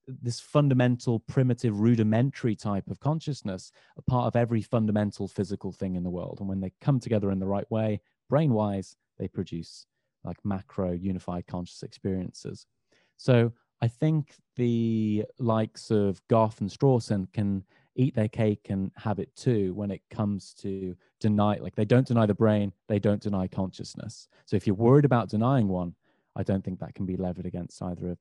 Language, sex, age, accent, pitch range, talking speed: English, male, 30-49, British, 100-125 Hz, 175 wpm